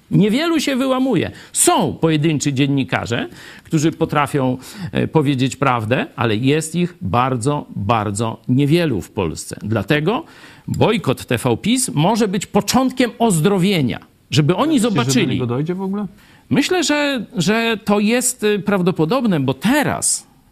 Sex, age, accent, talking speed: male, 50-69, native, 115 wpm